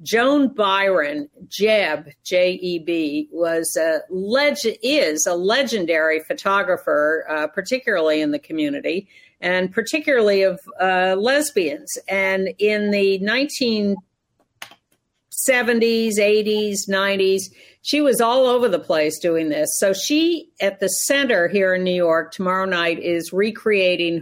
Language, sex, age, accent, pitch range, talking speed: English, female, 50-69, American, 175-215 Hz, 110 wpm